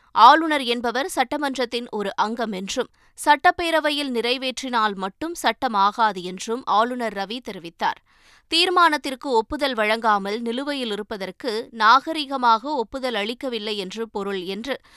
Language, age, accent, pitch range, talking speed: Tamil, 20-39, native, 210-275 Hz, 95 wpm